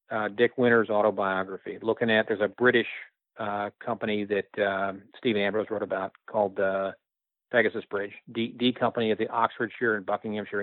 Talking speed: 165 wpm